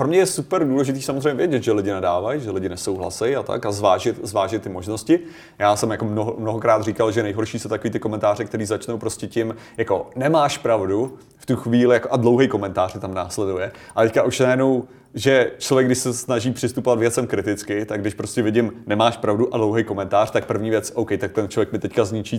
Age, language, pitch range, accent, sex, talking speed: 30-49, Czech, 110-125 Hz, native, male, 210 wpm